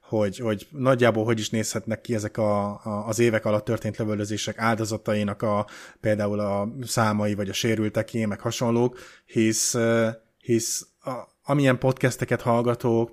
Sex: male